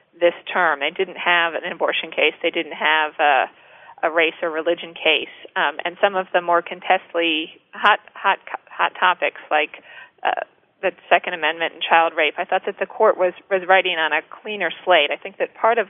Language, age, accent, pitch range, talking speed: English, 40-59, American, 165-185 Hz, 200 wpm